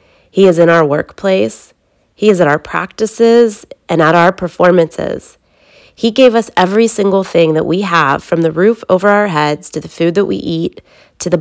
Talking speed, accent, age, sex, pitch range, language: 195 wpm, American, 30-49, female, 165-200 Hz, English